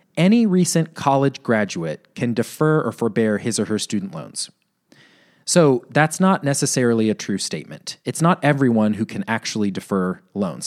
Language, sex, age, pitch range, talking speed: English, male, 30-49, 110-145 Hz, 160 wpm